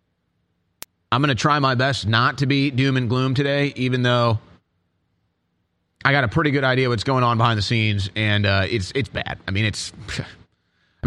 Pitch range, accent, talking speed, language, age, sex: 90-145 Hz, American, 195 wpm, English, 30-49, male